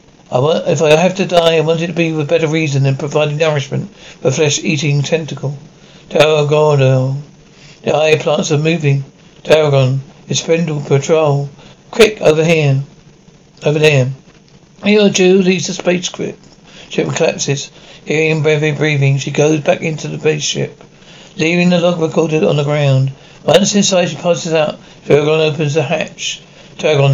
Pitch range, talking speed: 145-170 Hz, 155 wpm